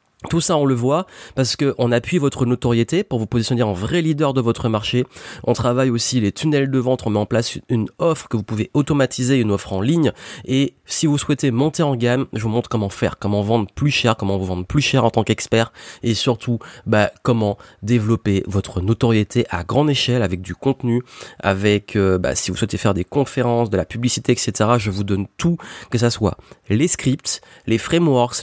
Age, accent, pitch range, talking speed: 30-49, French, 110-135 Hz, 210 wpm